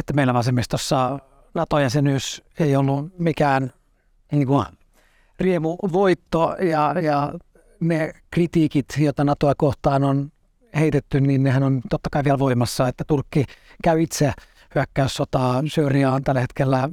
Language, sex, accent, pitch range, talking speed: Finnish, male, native, 130-155 Hz, 115 wpm